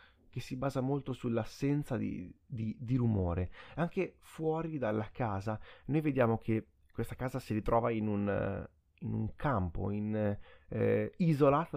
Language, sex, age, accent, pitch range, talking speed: Italian, male, 30-49, native, 105-140 Hz, 130 wpm